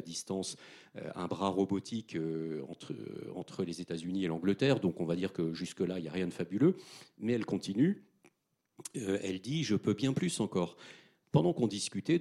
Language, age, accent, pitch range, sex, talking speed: French, 40-59, French, 95-120 Hz, male, 195 wpm